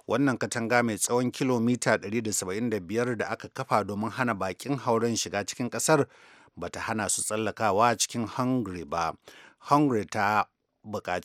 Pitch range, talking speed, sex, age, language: 105-130 Hz, 150 wpm, male, 60-79, English